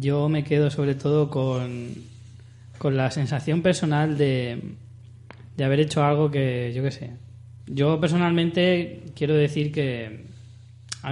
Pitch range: 120-150 Hz